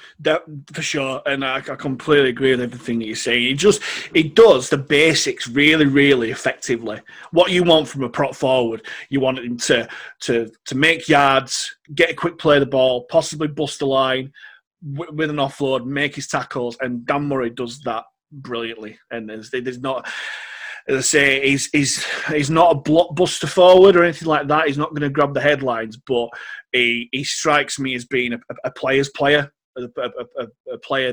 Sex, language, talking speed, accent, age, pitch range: male, English, 195 wpm, British, 30-49, 120-150 Hz